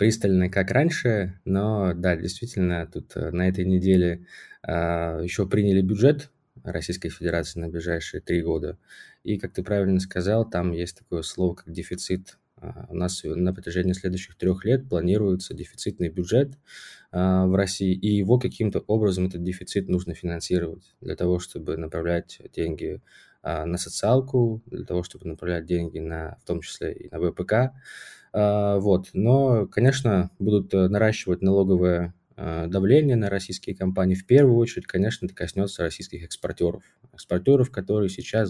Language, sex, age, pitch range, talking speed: Russian, male, 20-39, 90-105 Hz, 140 wpm